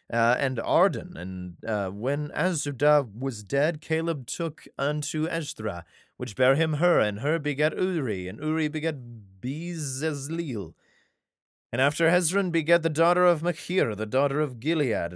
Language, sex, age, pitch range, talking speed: English, male, 30-49, 120-155 Hz, 145 wpm